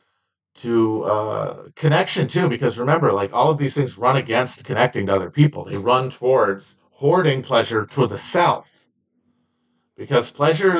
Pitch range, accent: 115-155 Hz, American